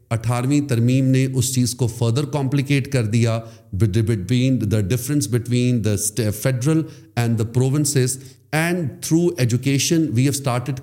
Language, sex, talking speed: Urdu, male, 125 wpm